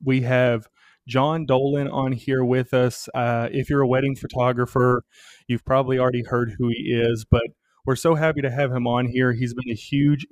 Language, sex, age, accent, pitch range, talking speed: English, male, 30-49, American, 120-140 Hz, 200 wpm